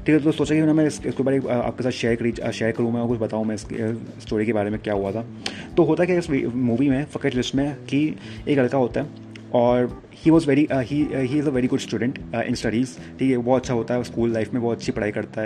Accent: native